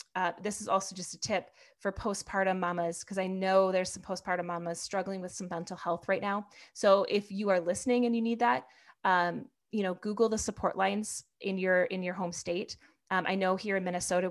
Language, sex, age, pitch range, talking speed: English, female, 20-39, 180-210 Hz, 220 wpm